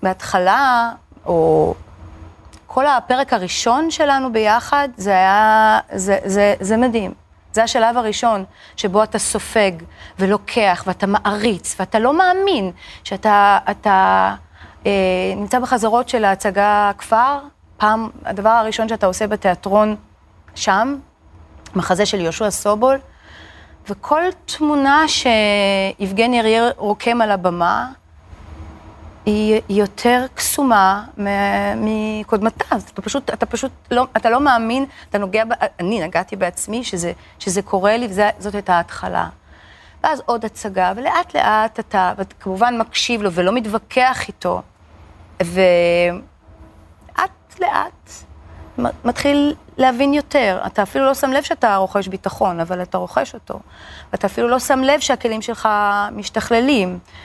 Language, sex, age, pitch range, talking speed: Hebrew, female, 30-49, 185-235 Hz, 120 wpm